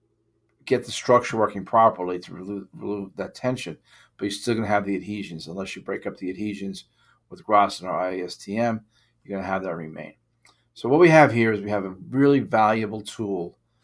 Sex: male